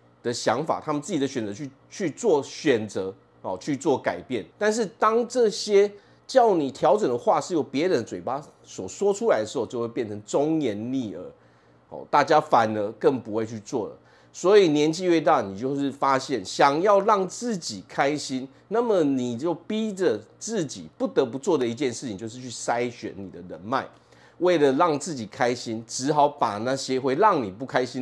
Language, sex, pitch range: Chinese, male, 115-180 Hz